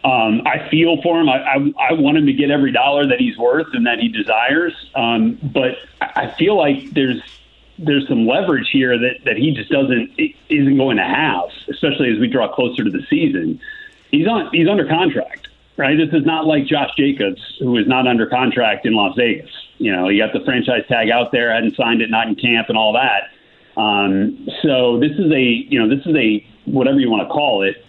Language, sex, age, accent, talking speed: English, male, 40-59, American, 215 wpm